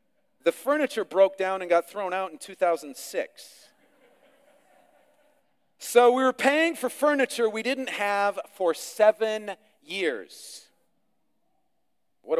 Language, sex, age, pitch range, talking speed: English, male, 40-59, 215-295 Hz, 110 wpm